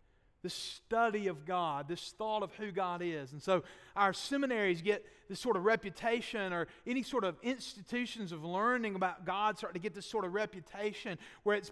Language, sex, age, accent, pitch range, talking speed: English, male, 40-59, American, 165-225 Hz, 190 wpm